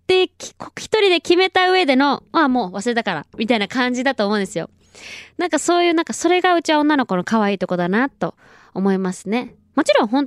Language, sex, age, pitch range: Japanese, female, 20-39, 180-260 Hz